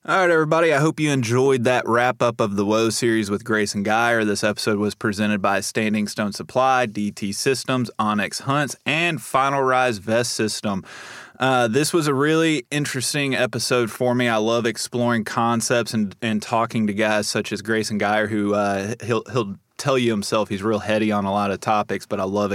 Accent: American